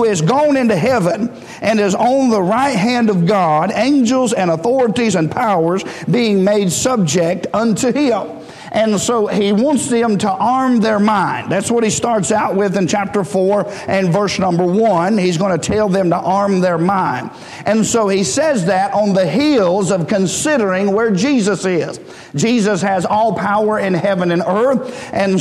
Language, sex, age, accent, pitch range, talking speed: English, male, 50-69, American, 185-225 Hz, 180 wpm